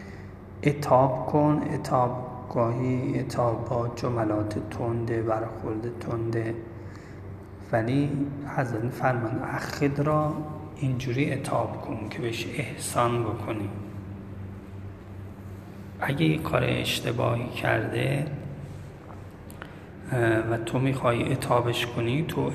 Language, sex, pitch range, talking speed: Persian, male, 100-130 Hz, 90 wpm